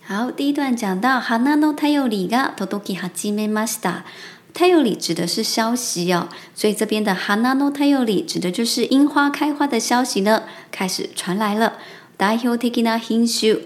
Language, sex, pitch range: Chinese, male, 190-245 Hz